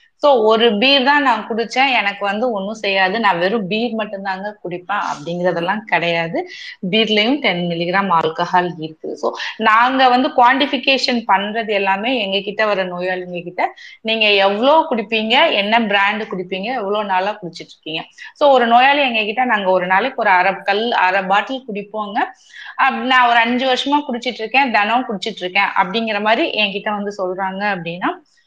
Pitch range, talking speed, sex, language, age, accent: 195-245 Hz, 155 wpm, female, Tamil, 20-39, native